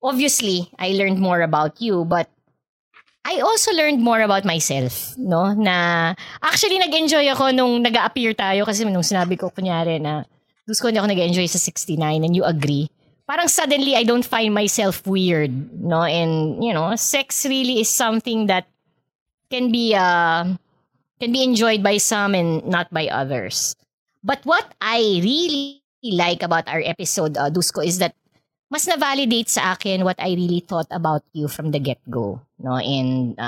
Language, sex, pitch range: English, female, 165-230 Hz